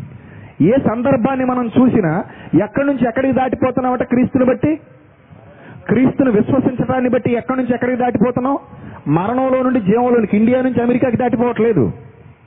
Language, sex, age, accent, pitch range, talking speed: Telugu, male, 40-59, native, 210-255 Hz, 120 wpm